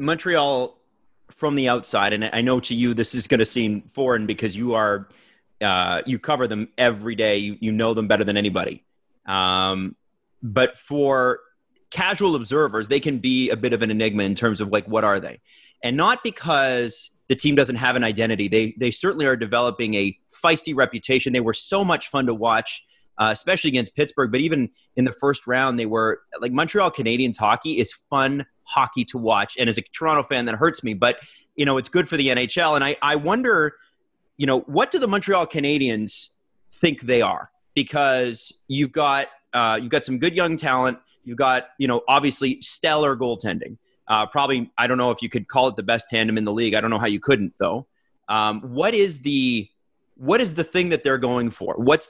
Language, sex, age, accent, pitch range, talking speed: English, male, 30-49, American, 110-140 Hz, 205 wpm